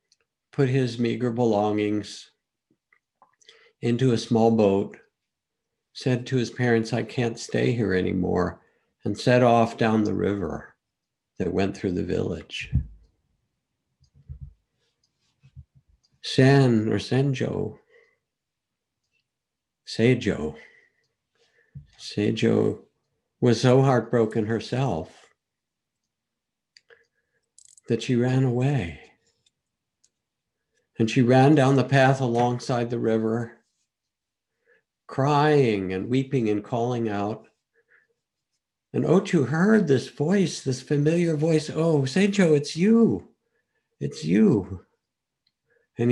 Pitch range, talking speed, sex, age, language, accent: 110-135 Hz, 90 wpm, male, 60-79, English, American